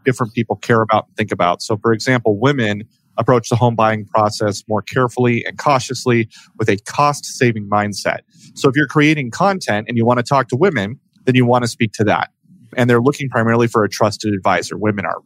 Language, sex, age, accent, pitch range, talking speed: English, male, 30-49, American, 110-130 Hz, 210 wpm